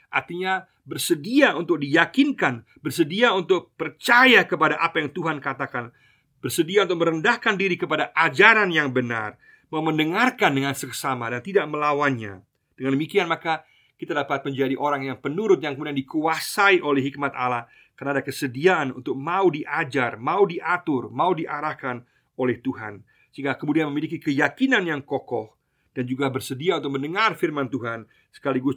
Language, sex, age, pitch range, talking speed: Indonesian, male, 50-69, 130-170 Hz, 140 wpm